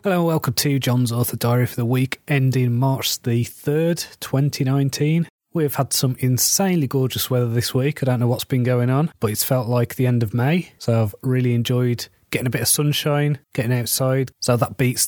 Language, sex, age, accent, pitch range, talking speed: English, male, 30-49, British, 120-135 Hz, 205 wpm